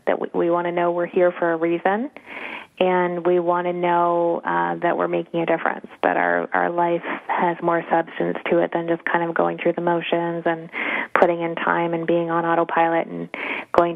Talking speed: 210 wpm